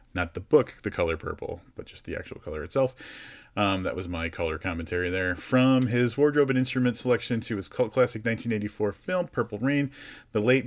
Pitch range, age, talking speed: 95-125 Hz, 30-49, 195 wpm